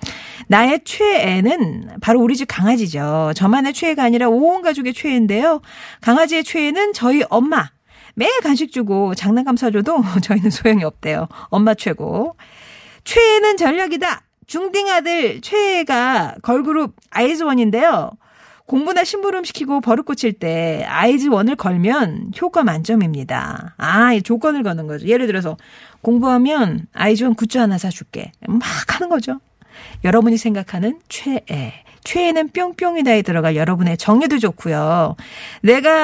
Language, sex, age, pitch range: Korean, female, 40-59, 195-310 Hz